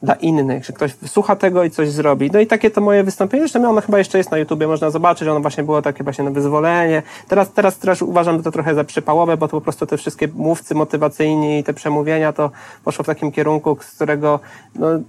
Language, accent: Polish, native